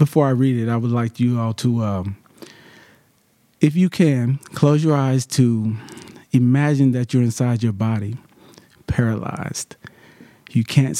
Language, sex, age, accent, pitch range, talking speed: English, male, 40-59, American, 110-140 Hz, 145 wpm